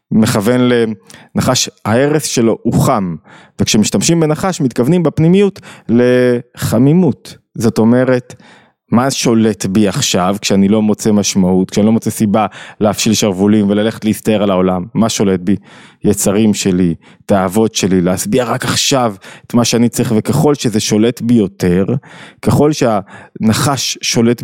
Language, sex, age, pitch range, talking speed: Hebrew, male, 20-39, 110-145 Hz, 130 wpm